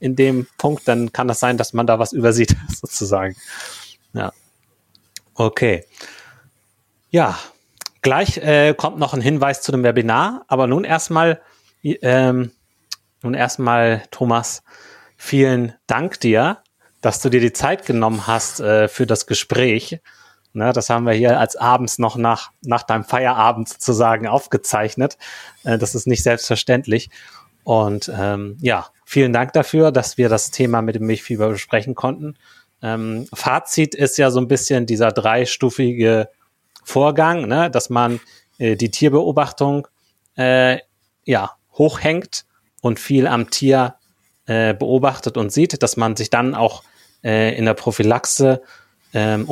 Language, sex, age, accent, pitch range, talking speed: German, male, 30-49, German, 110-135 Hz, 140 wpm